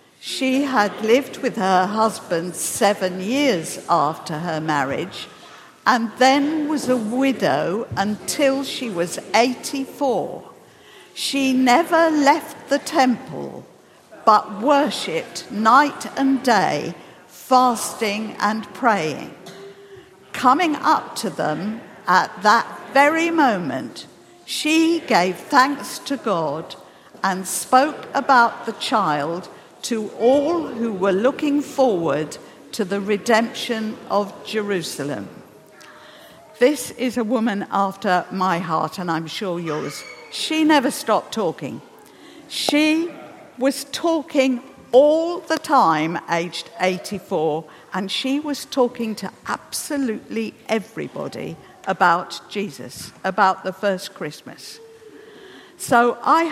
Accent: British